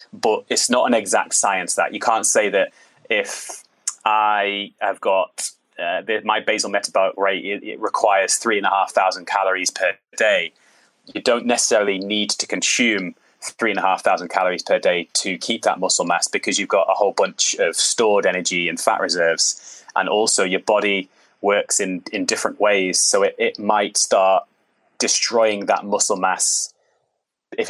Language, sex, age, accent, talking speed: English, male, 20-39, British, 175 wpm